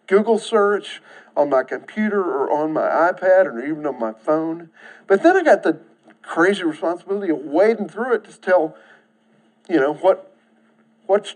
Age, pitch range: 50-69, 160-230 Hz